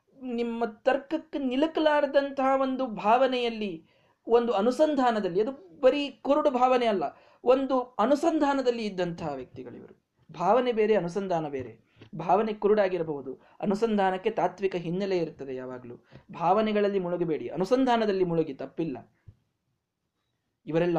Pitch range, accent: 165-260 Hz, native